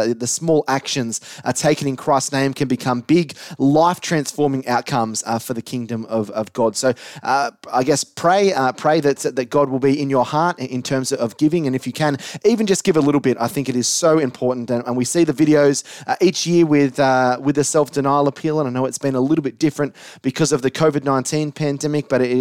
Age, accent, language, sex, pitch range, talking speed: 30-49, Australian, English, male, 125-160 Hz, 235 wpm